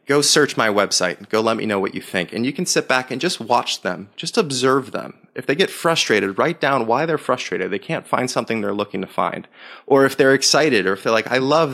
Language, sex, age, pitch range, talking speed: English, male, 20-39, 100-135 Hz, 250 wpm